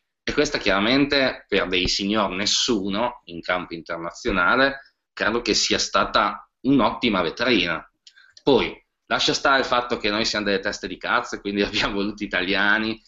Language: Italian